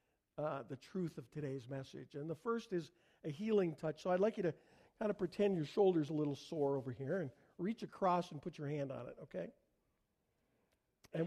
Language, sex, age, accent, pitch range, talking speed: English, male, 50-69, American, 150-195 Hz, 210 wpm